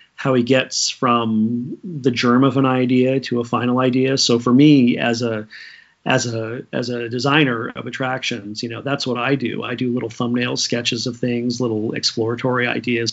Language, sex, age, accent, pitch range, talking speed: English, male, 40-59, American, 120-145 Hz, 185 wpm